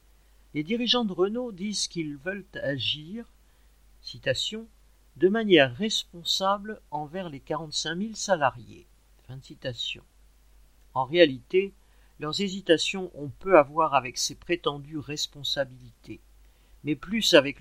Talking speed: 105 wpm